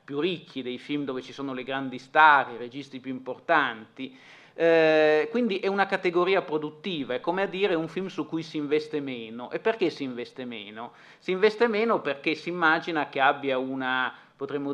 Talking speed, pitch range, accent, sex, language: 185 wpm, 135-160 Hz, native, male, Italian